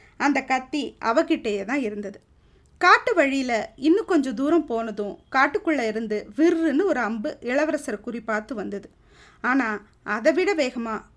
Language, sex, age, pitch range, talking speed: Tamil, female, 20-39, 225-315 Hz, 125 wpm